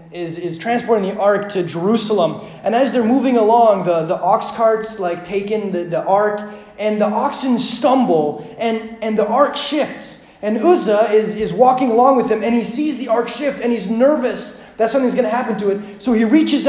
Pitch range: 195-245 Hz